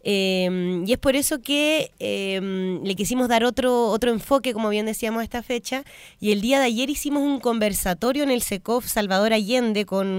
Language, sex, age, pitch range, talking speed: Spanish, female, 20-39, 190-240 Hz, 195 wpm